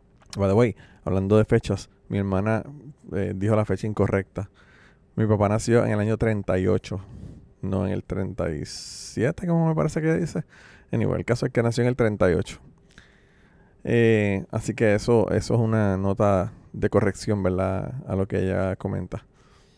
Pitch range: 100-120 Hz